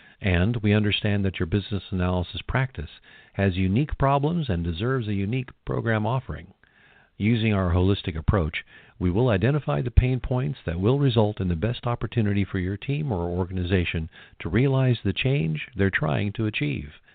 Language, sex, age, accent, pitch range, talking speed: English, male, 50-69, American, 95-125 Hz, 165 wpm